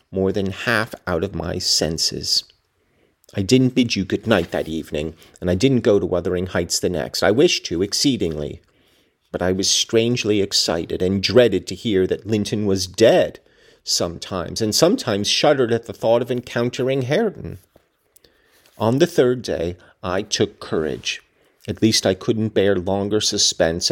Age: 40-59